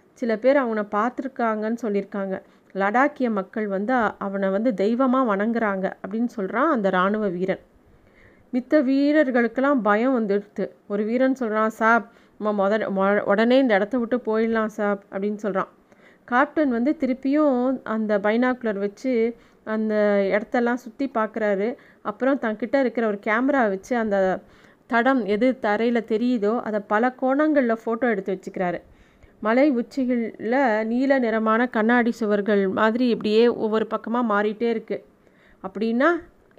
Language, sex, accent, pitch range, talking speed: Tamil, female, native, 205-255 Hz, 125 wpm